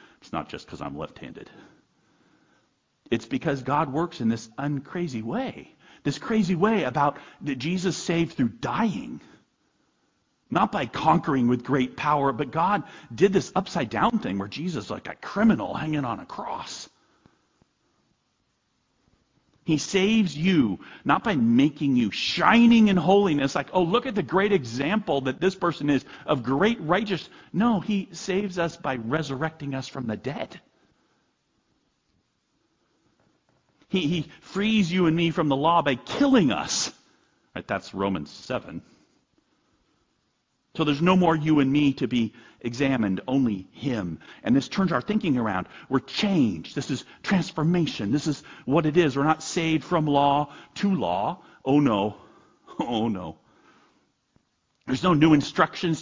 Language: English